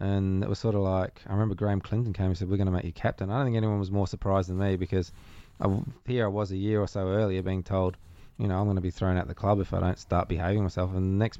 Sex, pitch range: male, 95-110 Hz